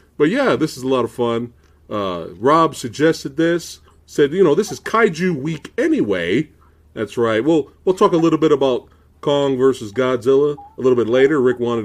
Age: 40-59